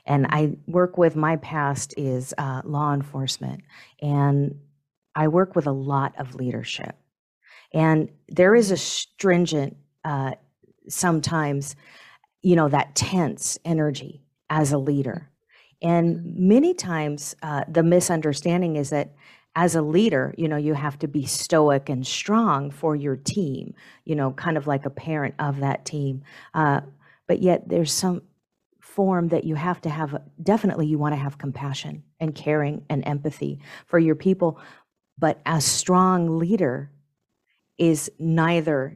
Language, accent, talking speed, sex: English, American, 150 wpm, female